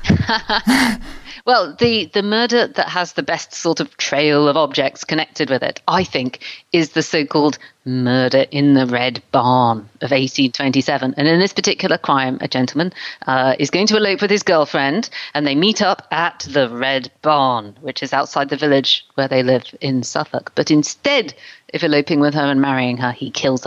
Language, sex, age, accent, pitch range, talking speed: English, female, 30-49, British, 135-210 Hz, 185 wpm